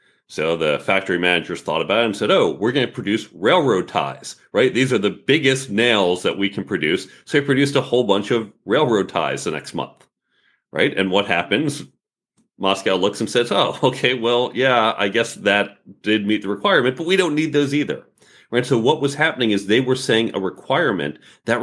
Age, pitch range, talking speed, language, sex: 40-59, 90-115 Hz, 210 wpm, English, male